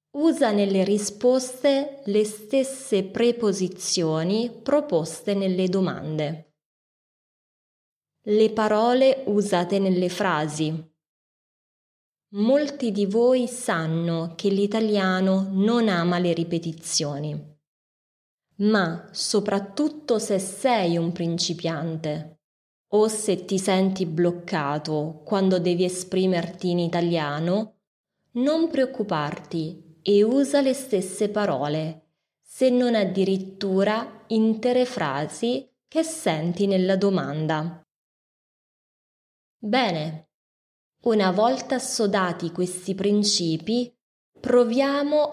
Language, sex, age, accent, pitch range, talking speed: Italian, female, 20-39, native, 165-225 Hz, 85 wpm